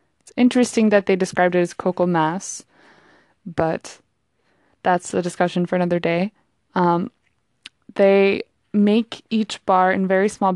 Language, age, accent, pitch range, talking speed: English, 20-39, American, 180-215 Hz, 135 wpm